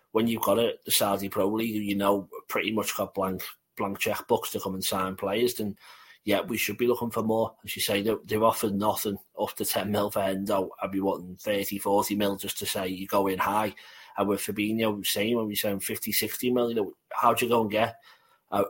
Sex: male